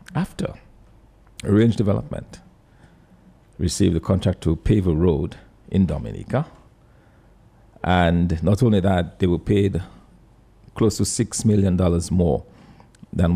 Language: English